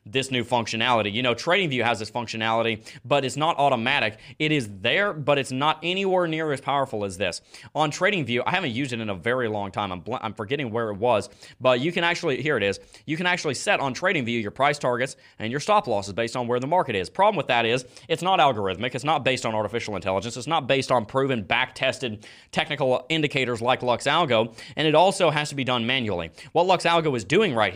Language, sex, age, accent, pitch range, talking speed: English, male, 30-49, American, 120-165 Hz, 225 wpm